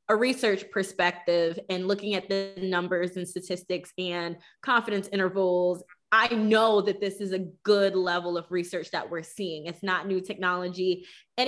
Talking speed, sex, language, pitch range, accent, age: 160 wpm, female, English, 180-215 Hz, American, 20-39